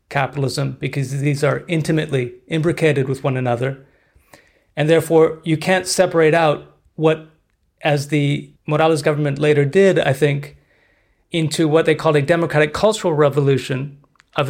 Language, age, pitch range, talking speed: English, 30-49, 140-165 Hz, 135 wpm